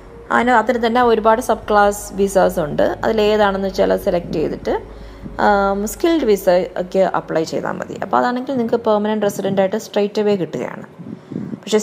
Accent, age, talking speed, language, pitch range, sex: native, 20-39, 125 wpm, Malayalam, 185-220 Hz, female